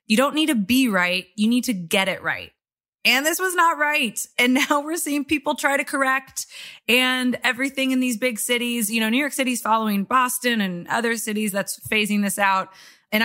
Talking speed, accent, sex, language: 210 wpm, American, female, English